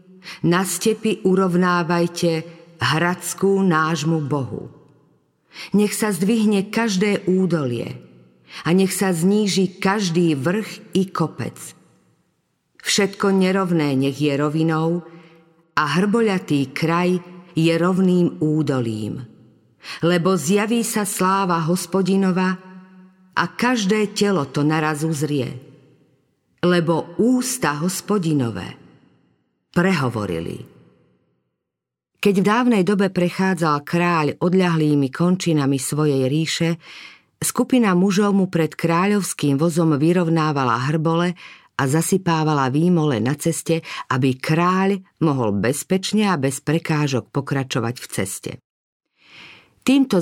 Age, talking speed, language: 50-69, 95 wpm, Slovak